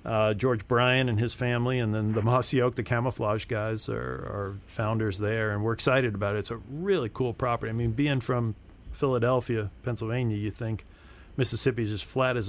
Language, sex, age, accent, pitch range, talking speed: English, male, 40-59, American, 105-125 Hz, 195 wpm